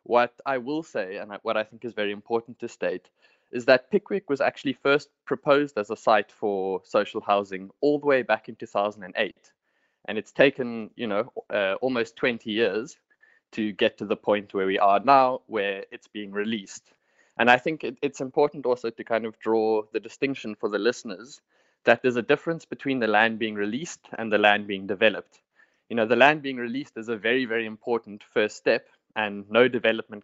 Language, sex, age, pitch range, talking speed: English, male, 20-39, 105-130 Hz, 195 wpm